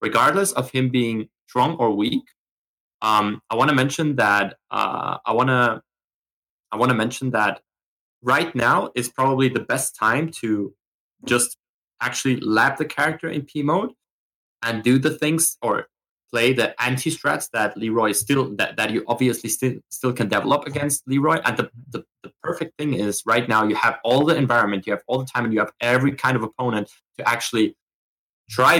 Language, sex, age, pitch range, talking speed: English, male, 30-49, 110-140 Hz, 185 wpm